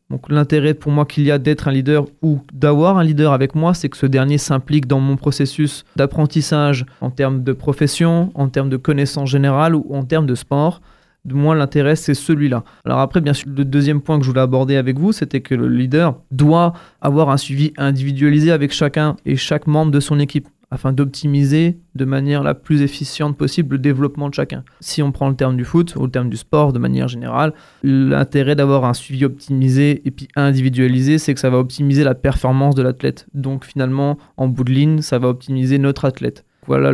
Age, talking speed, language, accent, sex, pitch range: 20-39, 210 wpm, French, French, male, 135-150 Hz